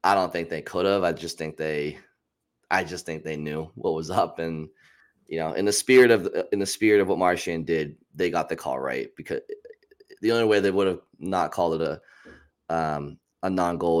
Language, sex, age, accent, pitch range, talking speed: English, male, 20-39, American, 80-95 Hz, 220 wpm